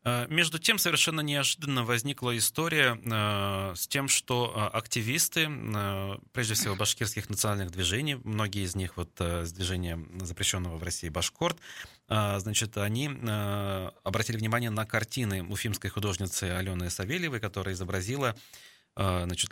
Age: 30-49